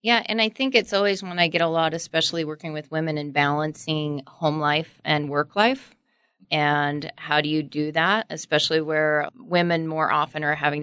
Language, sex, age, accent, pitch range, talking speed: English, female, 30-49, American, 145-165 Hz, 195 wpm